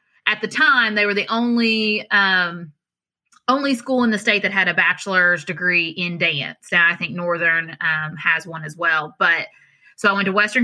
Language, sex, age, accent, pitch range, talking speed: English, female, 20-39, American, 175-215 Hz, 195 wpm